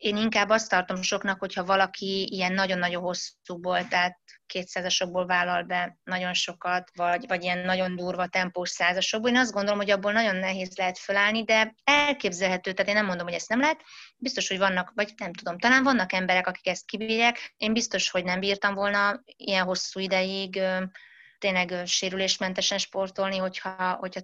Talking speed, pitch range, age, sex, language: 170 wpm, 180-215 Hz, 20-39, female, Hungarian